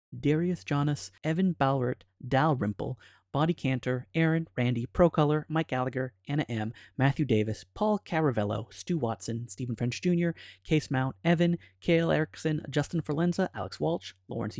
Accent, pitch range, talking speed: American, 120-165 Hz, 135 wpm